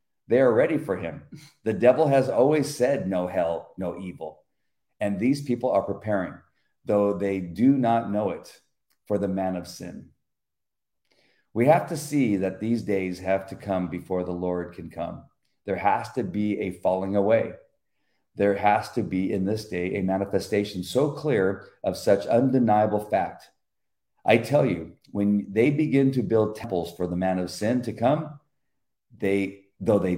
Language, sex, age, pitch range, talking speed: English, male, 40-59, 95-125 Hz, 170 wpm